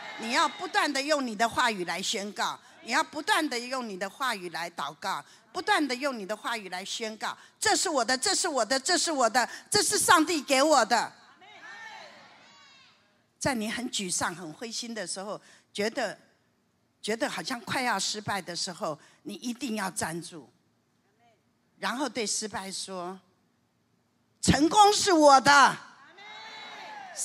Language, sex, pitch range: Chinese, female, 210-320 Hz